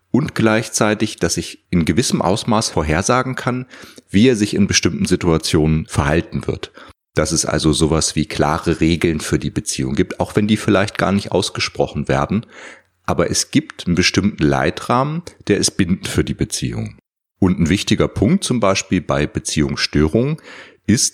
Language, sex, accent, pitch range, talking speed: German, male, German, 80-100 Hz, 160 wpm